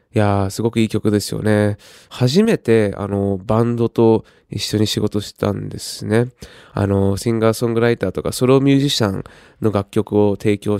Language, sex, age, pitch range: Japanese, male, 20-39, 100-120 Hz